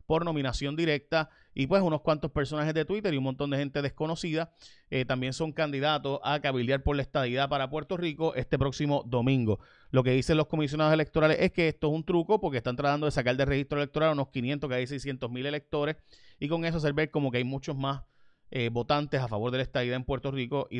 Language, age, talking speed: Spanish, 30-49, 225 wpm